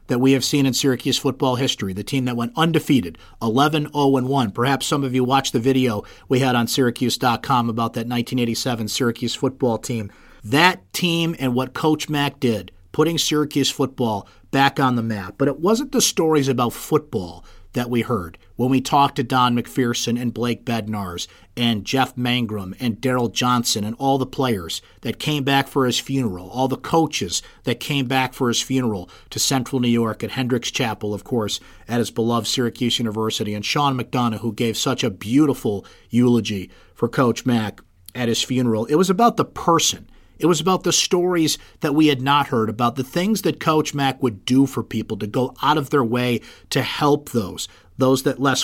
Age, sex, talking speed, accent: 50-69, male, 190 wpm, American